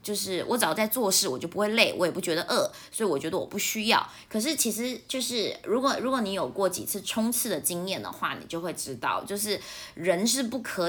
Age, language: 20-39, Chinese